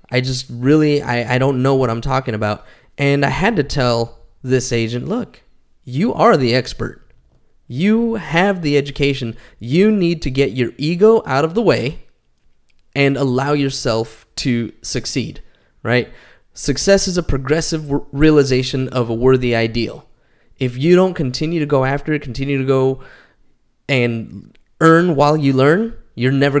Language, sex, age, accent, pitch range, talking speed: English, male, 20-39, American, 125-160 Hz, 160 wpm